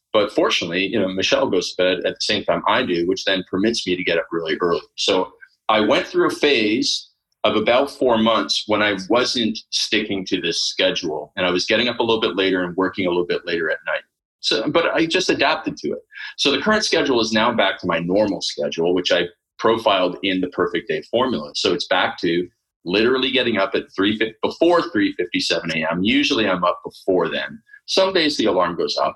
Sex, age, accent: male, 30-49, American